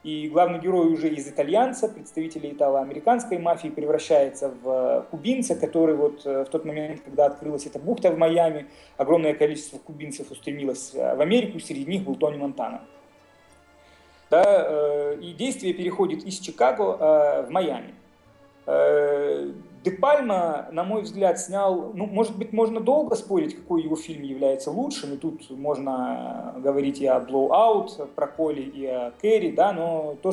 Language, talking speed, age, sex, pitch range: Russian, 150 wpm, 30-49, male, 145-180 Hz